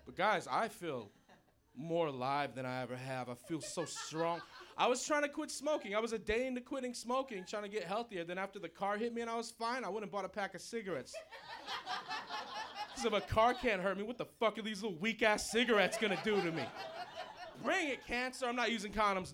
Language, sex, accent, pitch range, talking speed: English, male, American, 135-225 Hz, 235 wpm